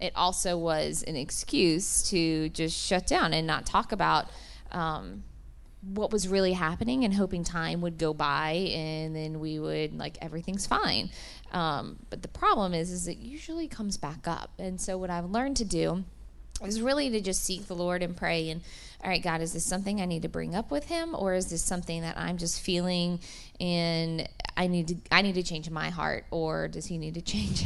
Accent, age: American, 20-39